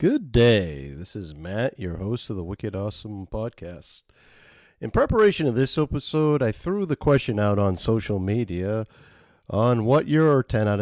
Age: 50-69